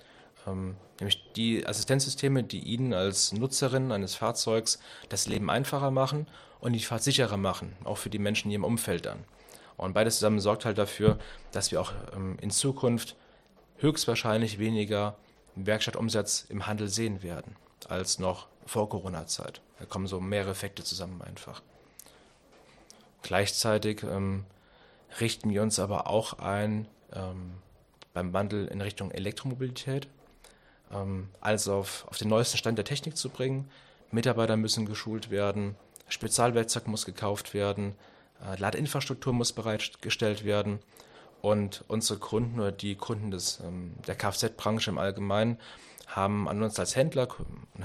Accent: German